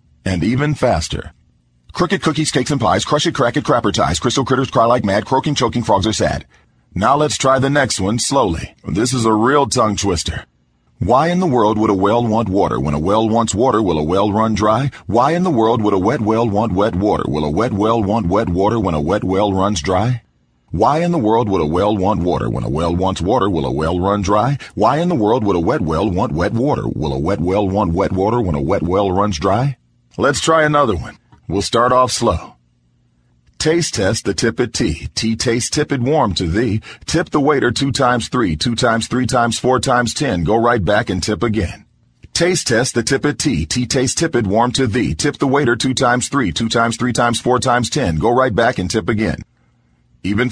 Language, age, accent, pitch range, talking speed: English, 40-59, American, 100-125 Hz, 230 wpm